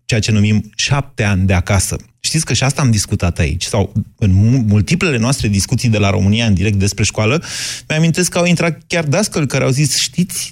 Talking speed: 205 wpm